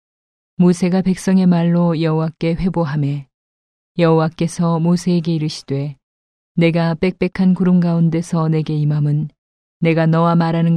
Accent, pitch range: native, 155-175 Hz